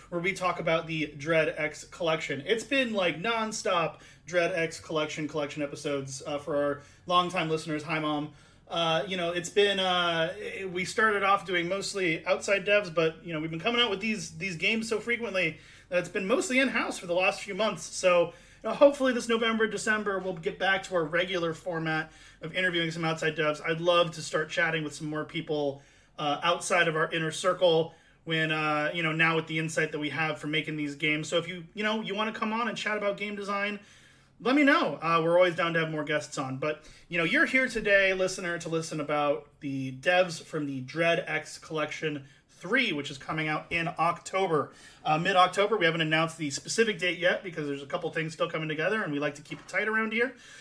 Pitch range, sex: 155-195 Hz, male